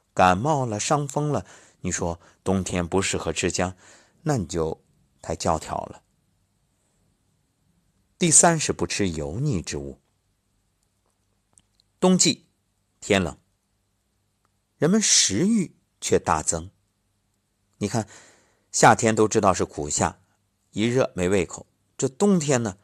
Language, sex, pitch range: Chinese, male, 90-115 Hz